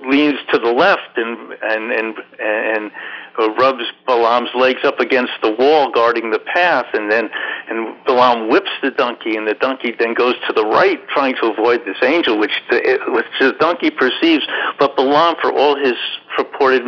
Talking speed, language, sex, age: 185 wpm, English, male, 60-79